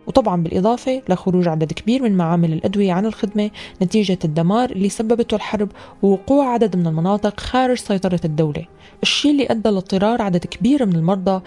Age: 20-39